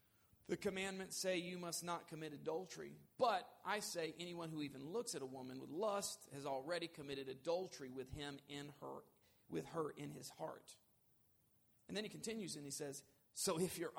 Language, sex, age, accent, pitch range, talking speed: English, male, 40-59, American, 140-190 Hz, 185 wpm